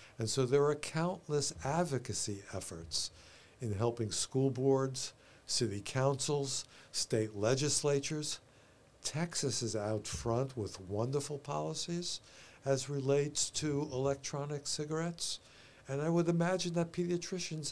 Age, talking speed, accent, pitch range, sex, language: 60-79, 110 wpm, American, 110-145 Hz, male, English